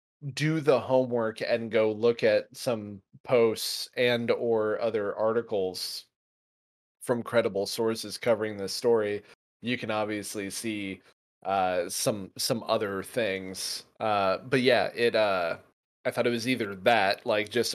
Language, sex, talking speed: English, male, 140 wpm